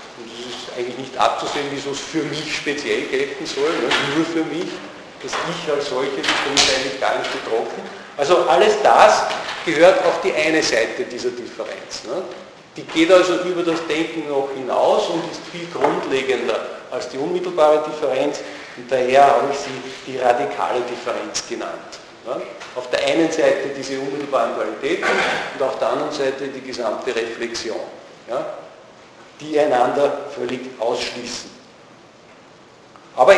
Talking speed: 150 wpm